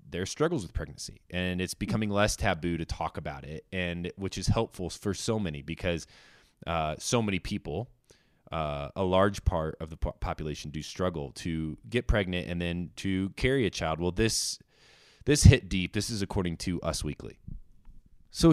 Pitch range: 80-100 Hz